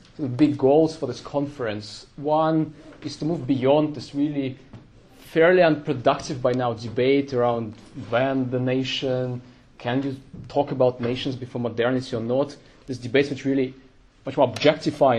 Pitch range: 110-135 Hz